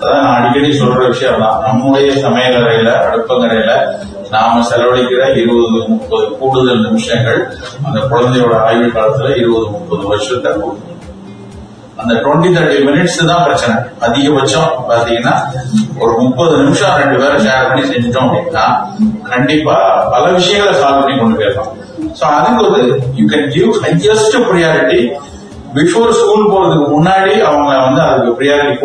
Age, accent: 30-49, native